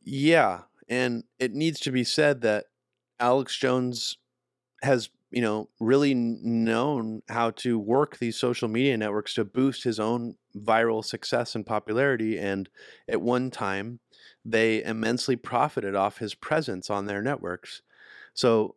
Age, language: 30-49, English